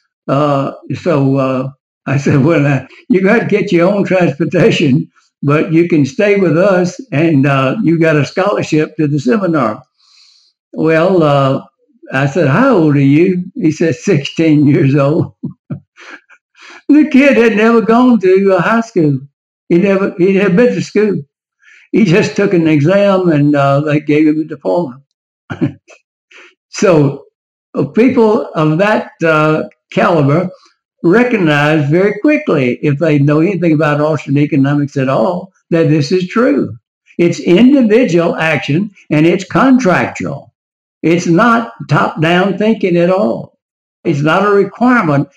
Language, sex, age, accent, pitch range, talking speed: English, male, 60-79, American, 145-195 Hz, 145 wpm